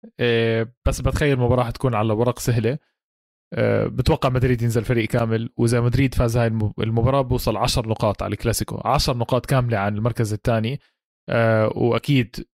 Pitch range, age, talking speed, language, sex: 115-135 Hz, 20-39, 140 wpm, Arabic, male